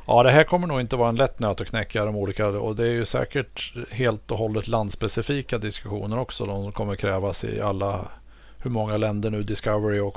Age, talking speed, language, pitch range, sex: 50-69, 210 wpm, Swedish, 105-115 Hz, male